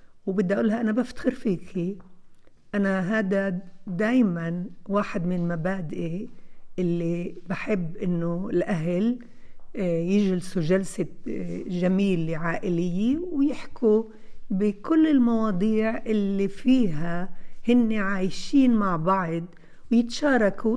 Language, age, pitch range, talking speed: Arabic, 50-69, 180-235 Hz, 85 wpm